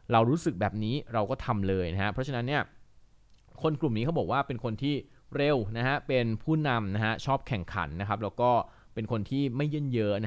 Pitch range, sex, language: 105-135 Hz, male, Thai